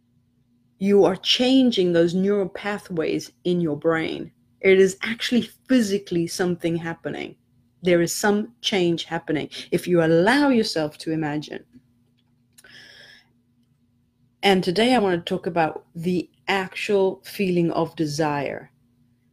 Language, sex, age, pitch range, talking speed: English, female, 30-49, 150-190 Hz, 115 wpm